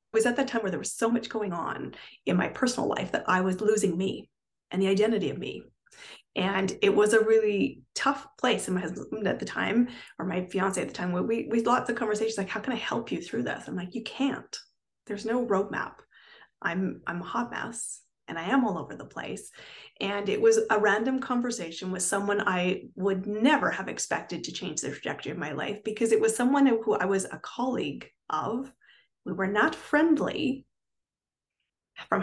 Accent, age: American, 30-49